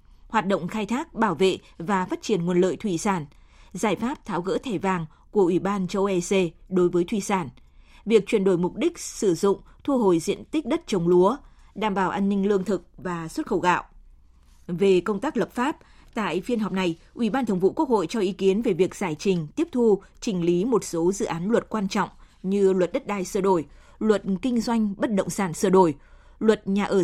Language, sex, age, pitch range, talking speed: Vietnamese, female, 20-39, 180-220 Hz, 225 wpm